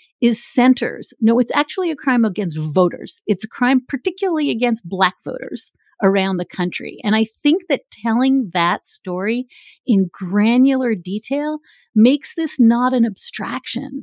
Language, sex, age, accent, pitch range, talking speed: English, female, 40-59, American, 205-280 Hz, 145 wpm